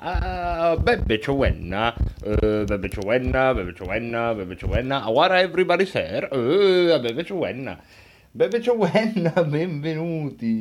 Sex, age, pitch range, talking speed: male, 30-49, 105-165 Hz, 100 wpm